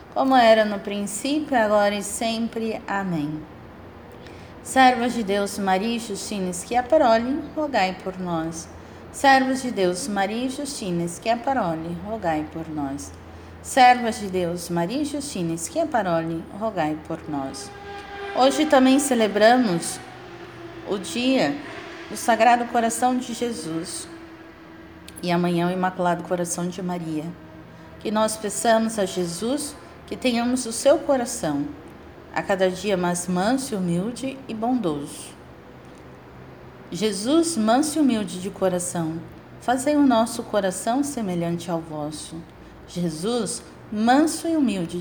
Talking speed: 130 wpm